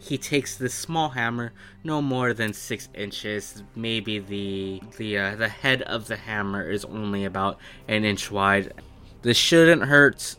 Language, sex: English, male